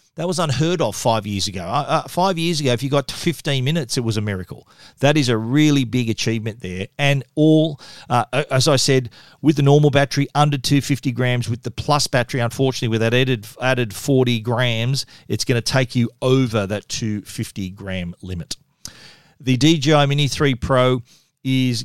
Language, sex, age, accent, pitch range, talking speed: English, male, 40-59, Australian, 115-140 Hz, 185 wpm